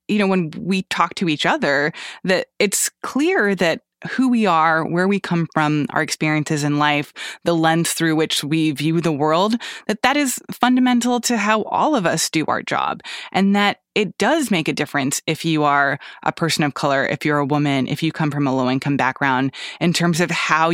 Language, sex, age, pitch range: English, female, 20-39, 155-195 Hz